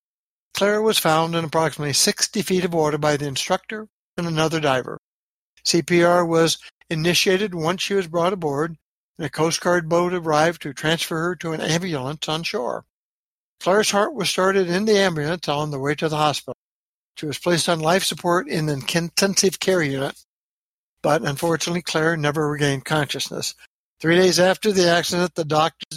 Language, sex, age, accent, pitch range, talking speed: English, male, 60-79, American, 155-185 Hz, 170 wpm